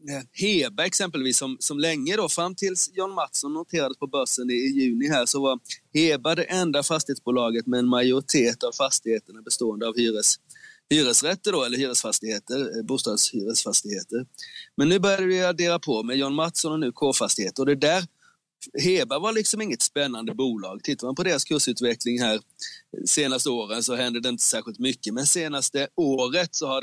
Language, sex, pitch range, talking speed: Swedish, male, 120-160 Hz, 170 wpm